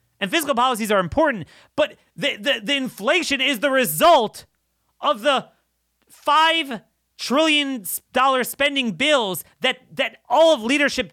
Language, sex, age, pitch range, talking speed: English, male, 30-49, 180-275 Hz, 130 wpm